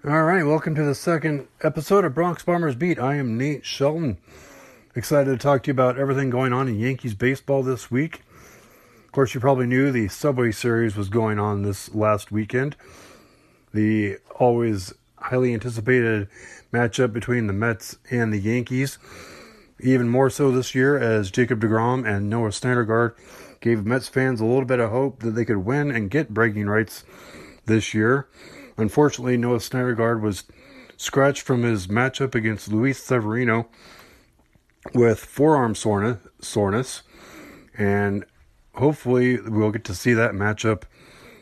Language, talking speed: English, 150 wpm